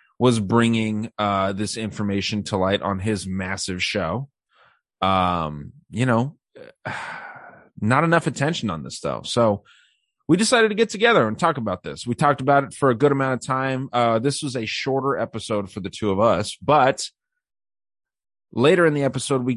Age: 30-49